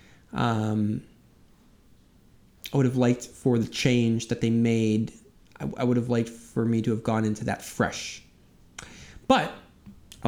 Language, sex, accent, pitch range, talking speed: English, male, American, 115-160 Hz, 150 wpm